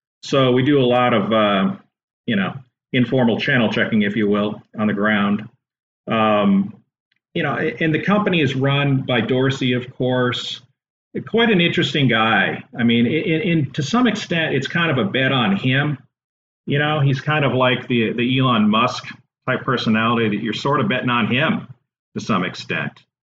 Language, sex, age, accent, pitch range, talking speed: English, male, 40-59, American, 110-135 Hz, 180 wpm